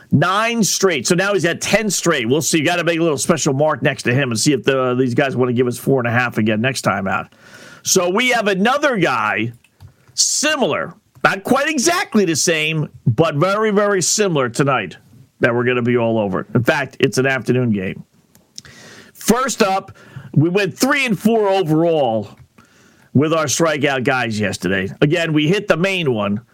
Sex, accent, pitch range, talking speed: male, American, 125-170 Hz, 195 wpm